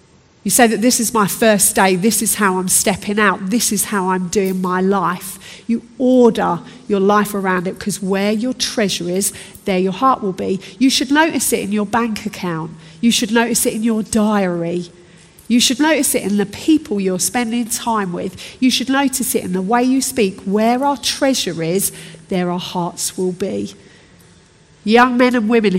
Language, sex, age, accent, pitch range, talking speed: English, female, 40-59, British, 190-245 Hz, 200 wpm